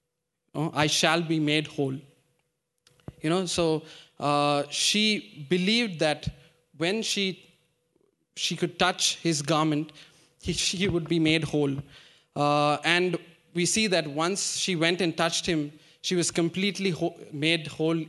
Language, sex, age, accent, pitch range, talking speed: English, male, 20-39, Indian, 150-175 Hz, 140 wpm